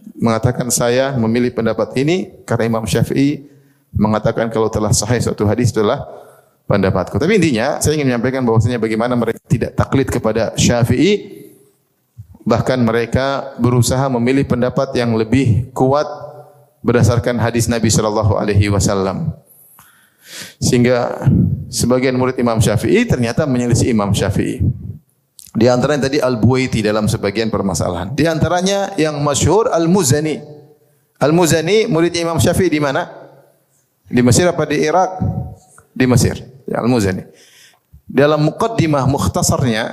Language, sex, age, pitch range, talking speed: Indonesian, male, 30-49, 115-145 Hz, 115 wpm